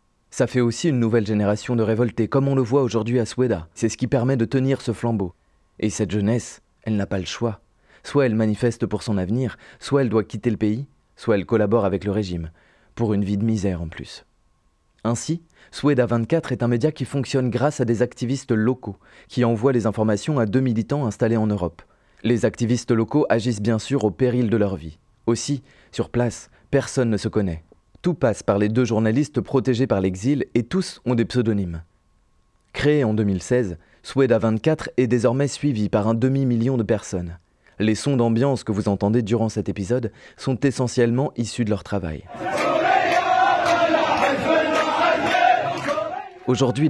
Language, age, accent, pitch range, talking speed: French, 30-49, French, 105-135 Hz, 175 wpm